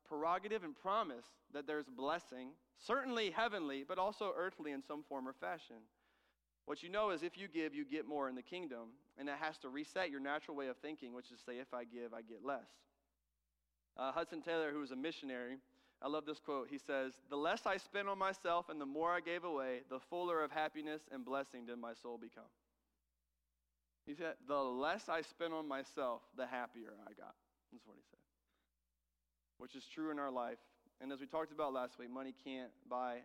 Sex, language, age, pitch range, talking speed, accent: male, English, 30-49, 120-185 Hz, 210 wpm, American